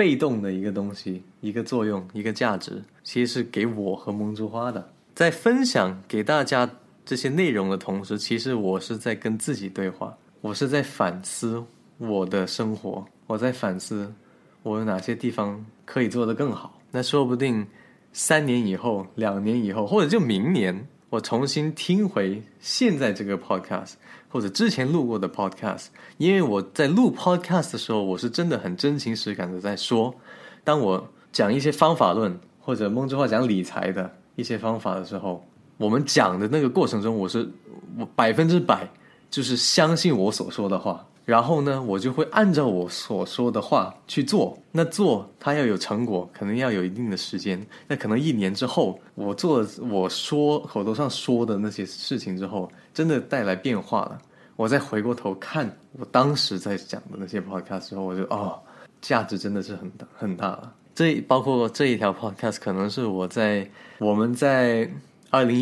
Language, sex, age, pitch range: Chinese, male, 20-39, 100-130 Hz